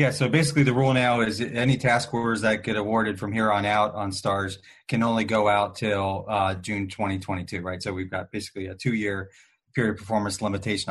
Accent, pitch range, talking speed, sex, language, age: American, 100-115 Hz, 210 wpm, male, English, 30-49